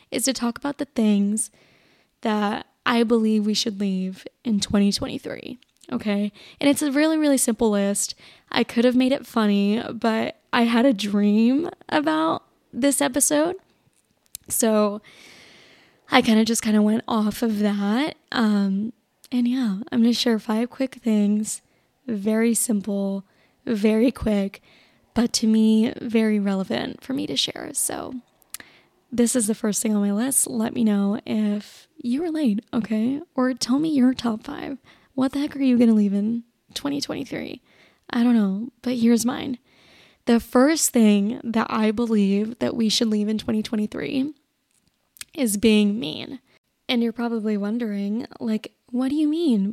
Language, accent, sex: English, American, female